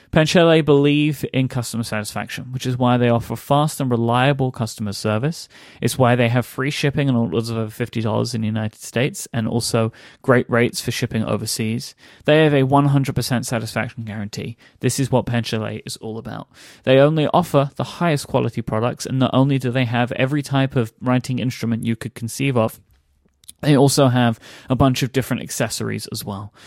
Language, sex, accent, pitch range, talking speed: English, male, British, 120-145 Hz, 185 wpm